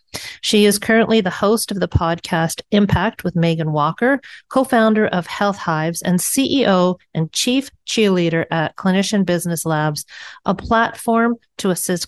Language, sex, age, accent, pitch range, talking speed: English, female, 40-59, American, 170-205 Hz, 145 wpm